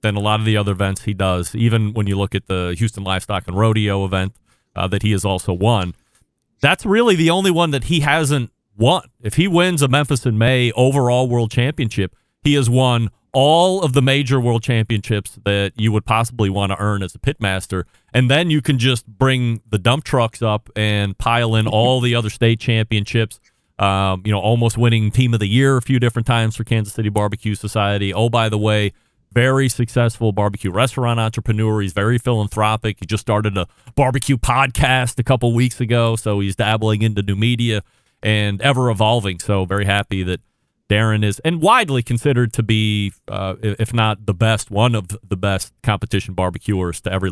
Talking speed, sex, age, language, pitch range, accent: 195 wpm, male, 30-49, English, 105-130 Hz, American